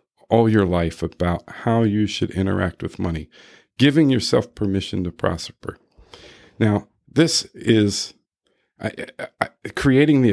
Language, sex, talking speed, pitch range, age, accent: English, male, 115 wpm, 95-120 Hz, 50-69, American